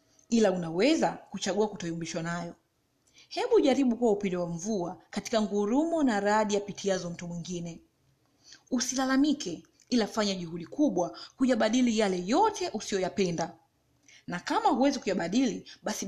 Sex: female